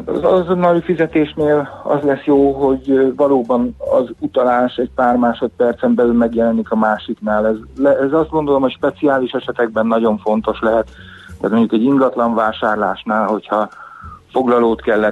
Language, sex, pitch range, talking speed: Hungarian, male, 105-125 Hz, 150 wpm